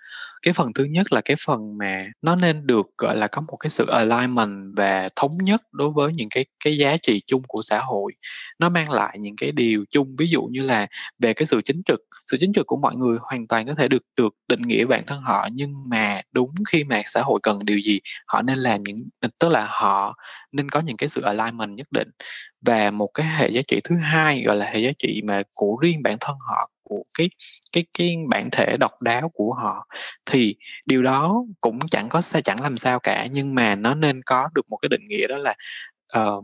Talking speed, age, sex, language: 230 wpm, 20-39, male, Vietnamese